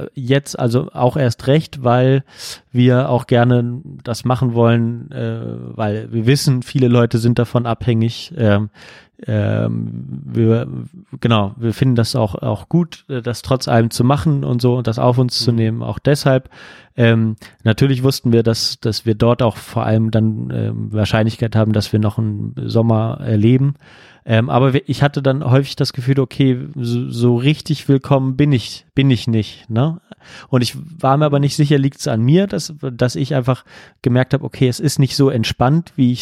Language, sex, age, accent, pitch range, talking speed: German, male, 30-49, German, 115-135 Hz, 175 wpm